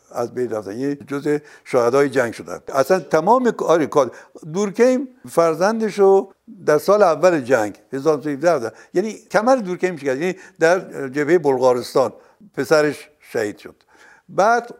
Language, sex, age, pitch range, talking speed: Persian, male, 60-79, 130-185 Hz, 125 wpm